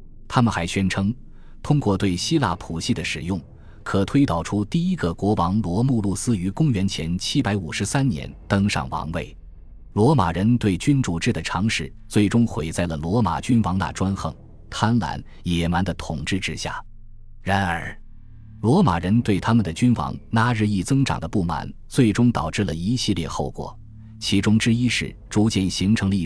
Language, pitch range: Chinese, 85-115 Hz